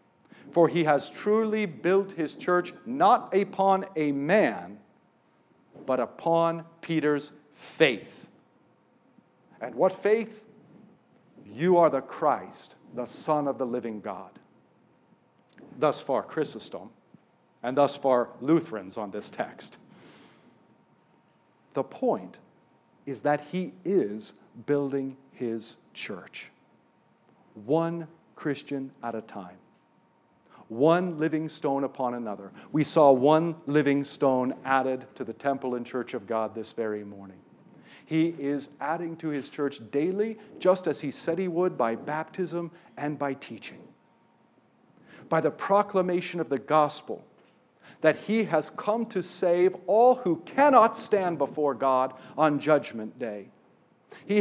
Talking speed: 125 wpm